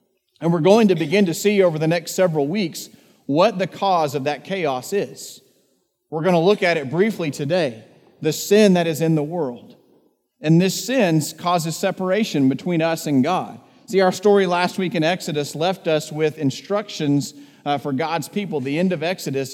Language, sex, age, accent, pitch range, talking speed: English, male, 40-59, American, 150-190 Hz, 185 wpm